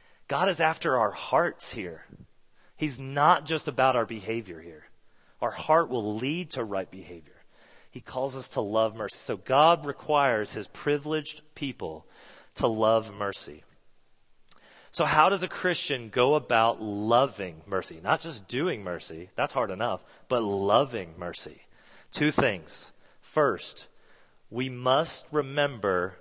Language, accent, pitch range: English, American, 110-150 Hz